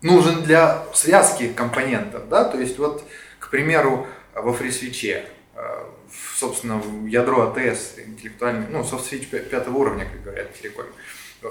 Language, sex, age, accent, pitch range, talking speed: Russian, male, 20-39, native, 120-155 Hz, 125 wpm